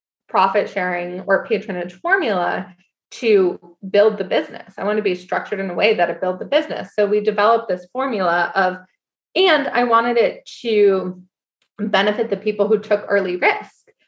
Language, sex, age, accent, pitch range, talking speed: English, female, 20-39, American, 185-230 Hz, 170 wpm